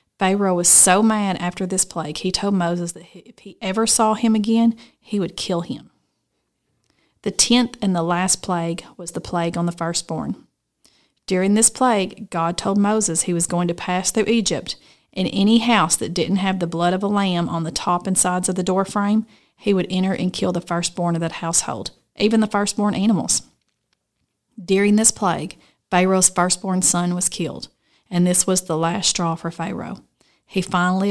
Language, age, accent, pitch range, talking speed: English, 40-59, American, 175-200 Hz, 185 wpm